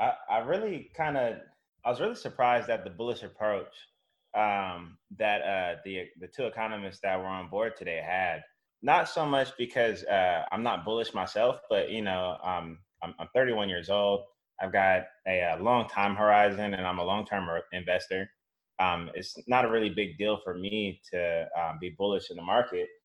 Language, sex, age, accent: English, male, 20-39, American